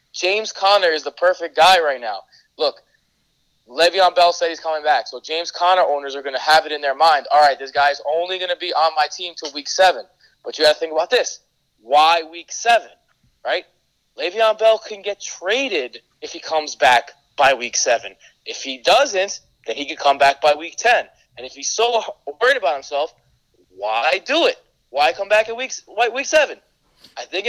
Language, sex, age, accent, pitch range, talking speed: English, male, 20-39, American, 145-190 Hz, 205 wpm